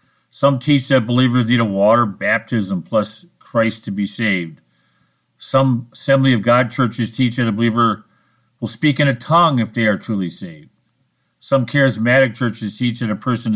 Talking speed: 175 wpm